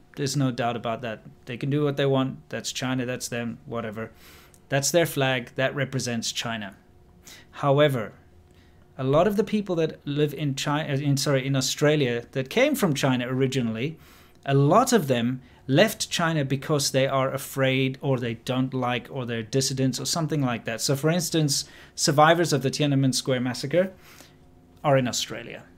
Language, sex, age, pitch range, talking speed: English, male, 30-49, 120-145 Hz, 170 wpm